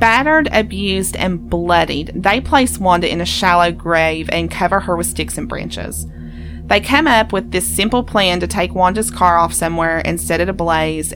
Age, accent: 30-49, American